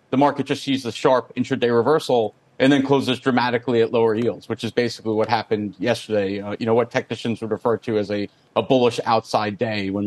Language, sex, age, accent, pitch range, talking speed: English, male, 40-59, American, 115-140 Hz, 220 wpm